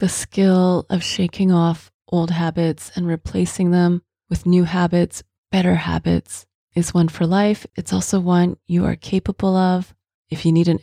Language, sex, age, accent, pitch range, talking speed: English, female, 30-49, American, 165-200 Hz, 165 wpm